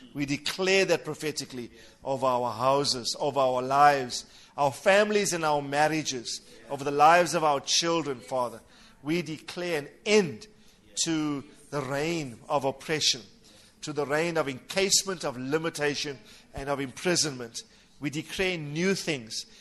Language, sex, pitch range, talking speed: English, male, 140-175 Hz, 140 wpm